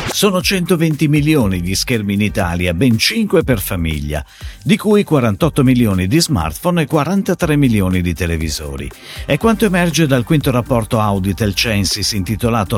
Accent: native